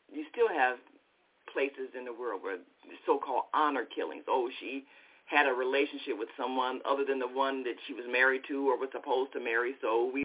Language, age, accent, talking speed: English, 50-69, American, 200 wpm